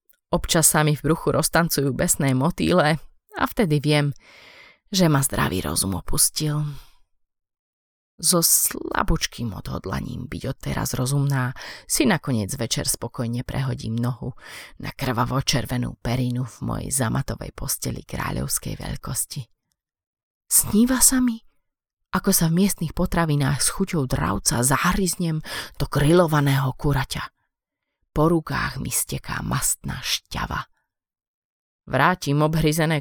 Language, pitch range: Slovak, 130-170 Hz